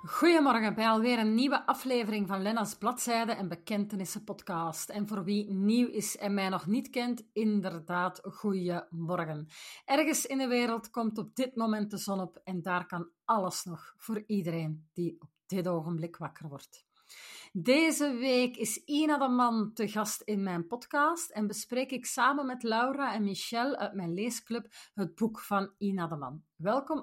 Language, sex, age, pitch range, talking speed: Dutch, female, 30-49, 185-240 Hz, 170 wpm